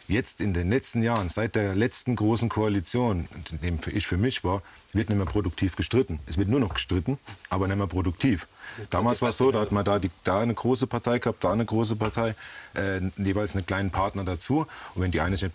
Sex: male